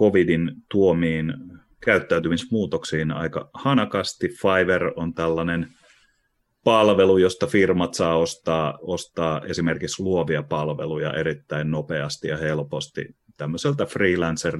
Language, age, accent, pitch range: Finnish, 30-49, native, 75-85 Hz